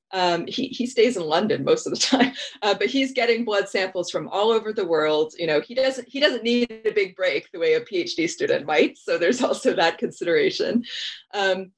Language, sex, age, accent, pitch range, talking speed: English, female, 30-49, American, 185-270 Hz, 220 wpm